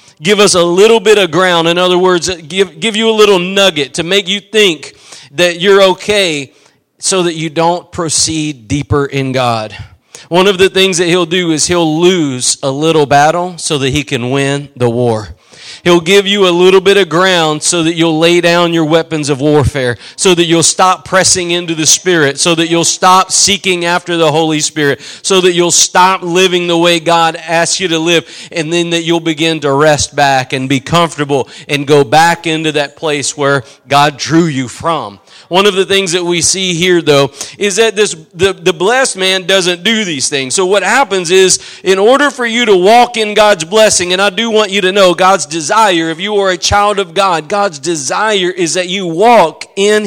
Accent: American